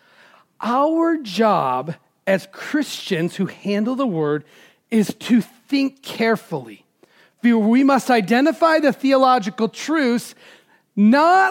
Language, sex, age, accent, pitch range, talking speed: English, male, 40-59, American, 190-255 Hz, 100 wpm